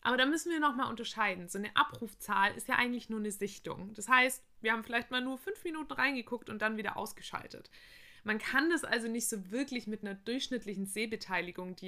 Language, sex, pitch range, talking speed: German, female, 200-245 Hz, 205 wpm